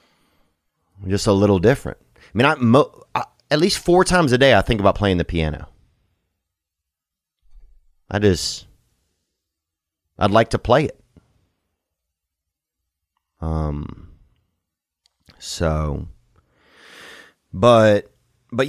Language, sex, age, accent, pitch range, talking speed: English, male, 30-49, American, 85-125 Hz, 105 wpm